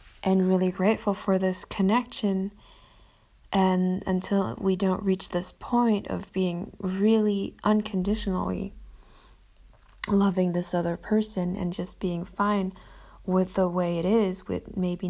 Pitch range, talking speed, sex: 180-210 Hz, 125 wpm, female